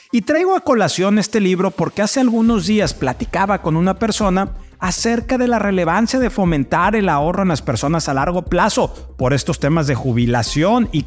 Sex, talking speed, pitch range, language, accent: male, 185 wpm, 150-220 Hz, Spanish, Mexican